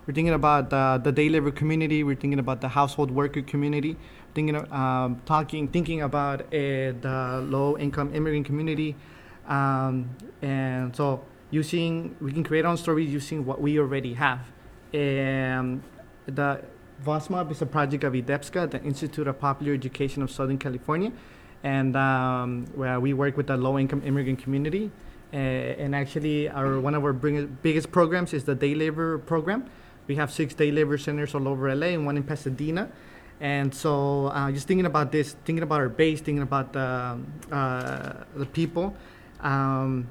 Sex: male